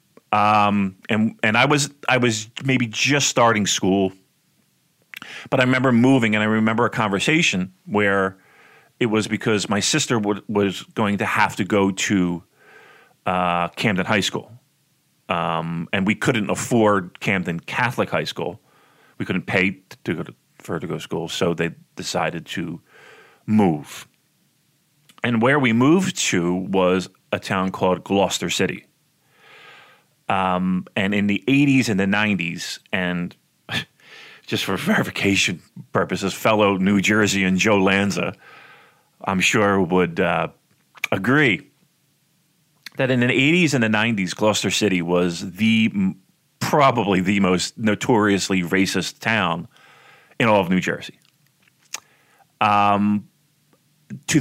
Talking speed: 135 wpm